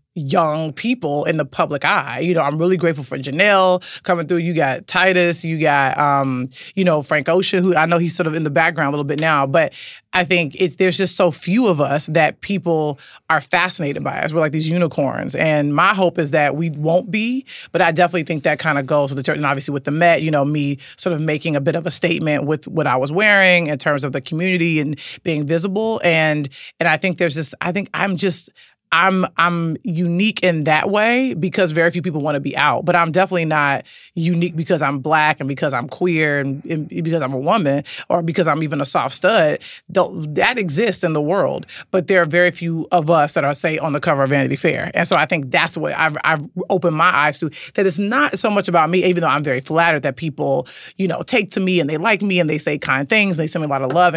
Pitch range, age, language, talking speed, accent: 150-180 Hz, 30-49, English, 250 wpm, American